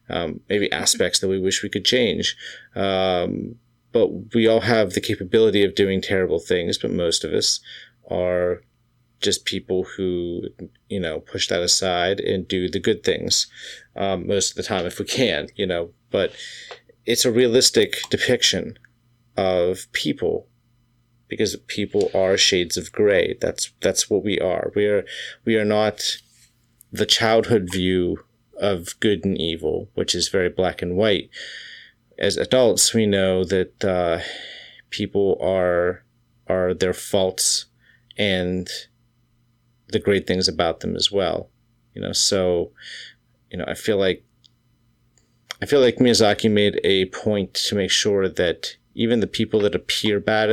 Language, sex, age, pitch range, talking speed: English, male, 30-49, 95-120 Hz, 150 wpm